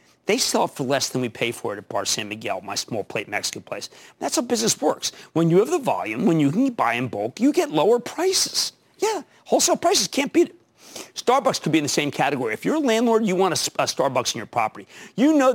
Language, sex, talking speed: English, male, 250 wpm